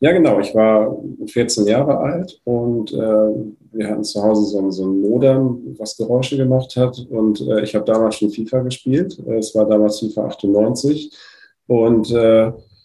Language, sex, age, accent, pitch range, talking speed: German, male, 40-59, German, 105-120 Hz, 170 wpm